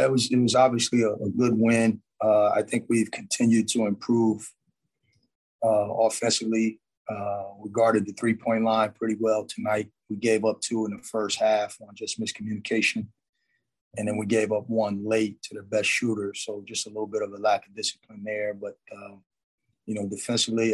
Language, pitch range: English, 105-115 Hz